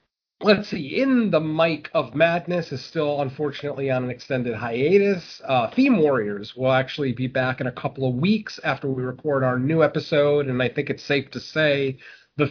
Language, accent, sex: English, American, male